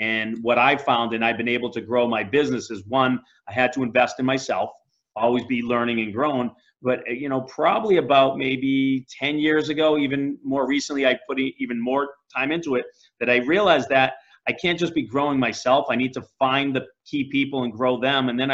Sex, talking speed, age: male, 215 wpm, 30-49